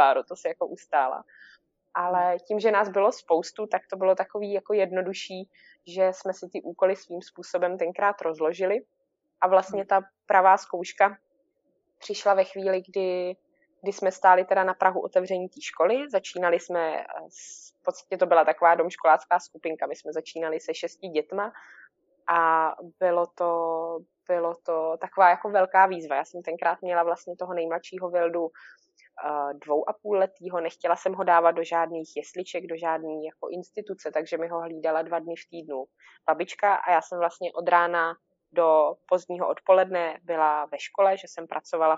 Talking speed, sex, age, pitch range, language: 165 wpm, female, 20-39, 165-190 Hz, Czech